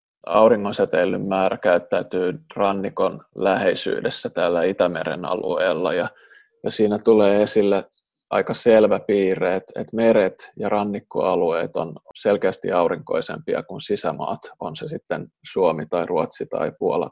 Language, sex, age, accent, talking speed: Finnish, male, 20-39, native, 115 wpm